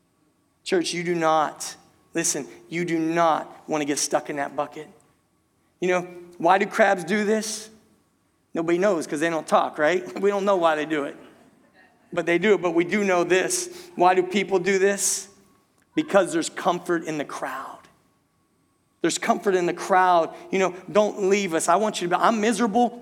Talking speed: 190 wpm